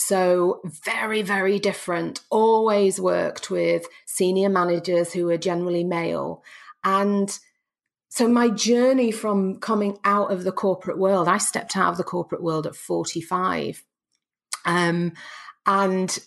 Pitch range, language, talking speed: 170-220 Hz, English, 130 wpm